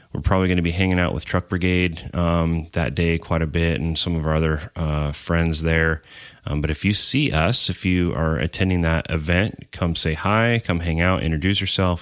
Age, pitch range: 30-49, 75-90 Hz